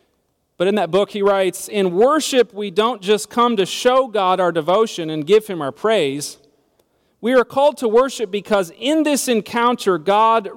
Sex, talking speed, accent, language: male, 180 wpm, American, English